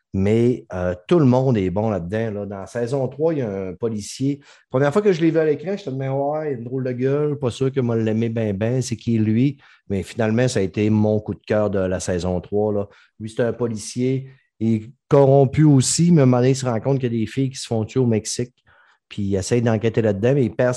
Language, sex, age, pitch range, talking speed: French, male, 30-49, 100-125 Hz, 280 wpm